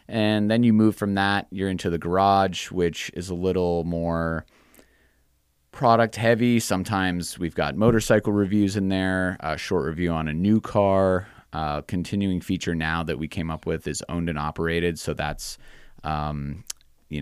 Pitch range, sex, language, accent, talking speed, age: 80-95 Hz, male, English, American, 165 wpm, 30-49